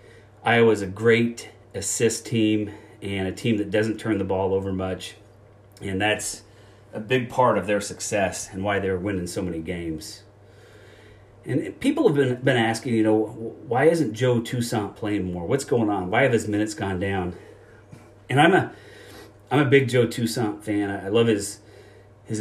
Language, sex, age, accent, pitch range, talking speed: English, male, 30-49, American, 100-120 Hz, 175 wpm